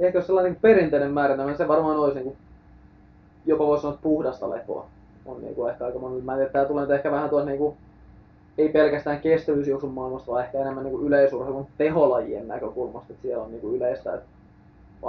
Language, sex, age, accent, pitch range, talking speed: Finnish, male, 20-39, native, 130-160 Hz, 185 wpm